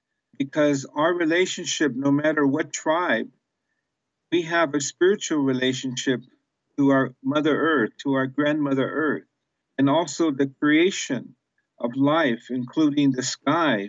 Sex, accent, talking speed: male, American, 125 wpm